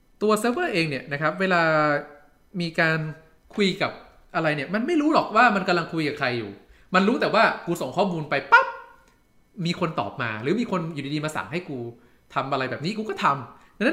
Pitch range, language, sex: 145-215 Hz, Thai, male